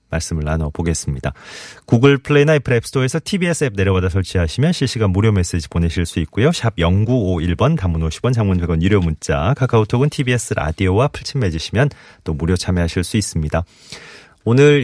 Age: 30-49